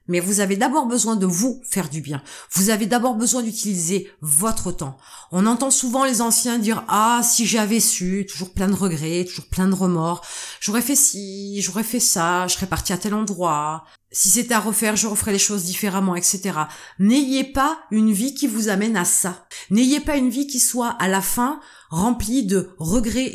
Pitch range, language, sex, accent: 185-245 Hz, French, female, French